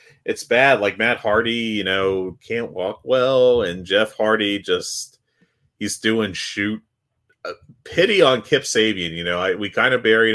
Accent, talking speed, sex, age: American, 170 wpm, male, 30-49